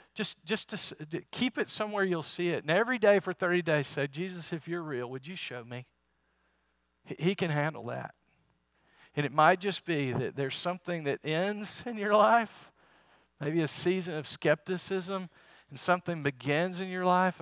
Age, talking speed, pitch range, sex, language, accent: 50-69, 185 wpm, 120-175 Hz, male, English, American